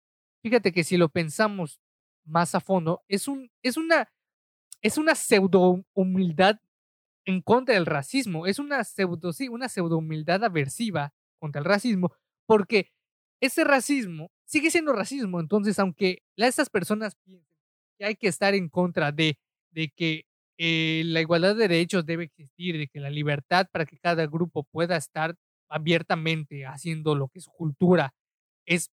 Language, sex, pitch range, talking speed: Spanish, male, 165-225 Hz, 150 wpm